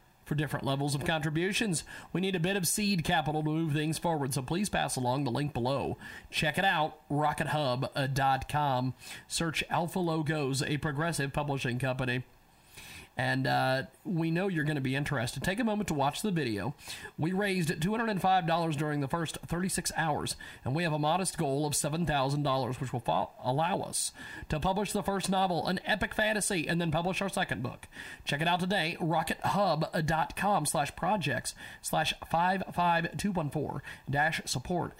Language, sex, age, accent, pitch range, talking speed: English, male, 40-59, American, 150-195 Hz, 165 wpm